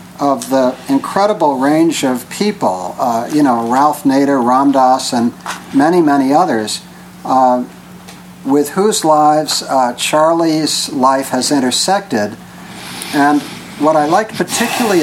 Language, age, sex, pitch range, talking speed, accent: English, 60-79, male, 135-190 Hz, 120 wpm, American